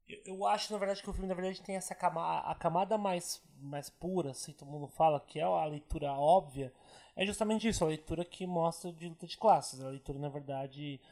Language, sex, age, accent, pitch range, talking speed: Portuguese, male, 20-39, Brazilian, 145-190 Hz, 220 wpm